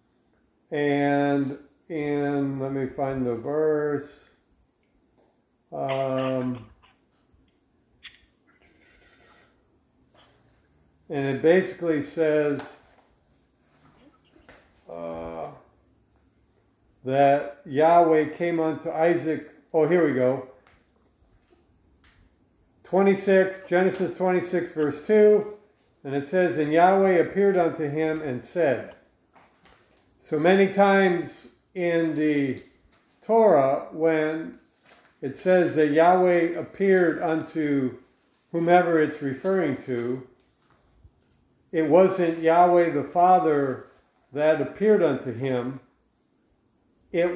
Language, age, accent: English, 50-69, American